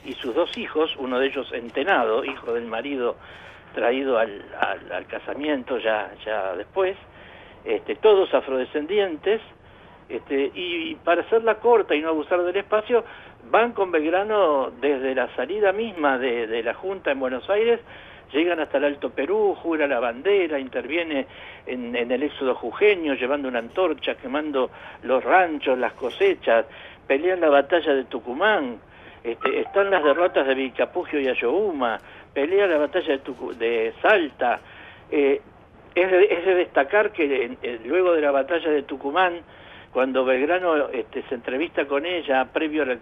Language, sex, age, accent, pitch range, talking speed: Spanish, male, 70-89, Argentinian, 140-210 Hz, 160 wpm